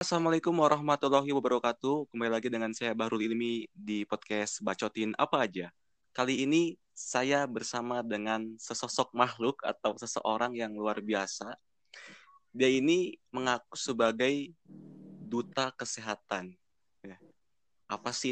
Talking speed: 110 wpm